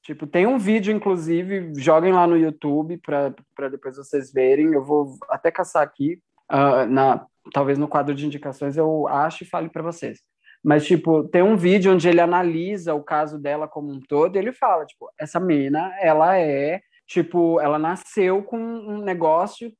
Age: 20-39